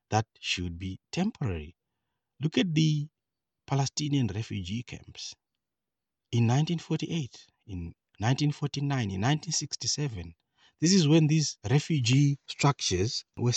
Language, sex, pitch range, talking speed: English, male, 105-155 Hz, 100 wpm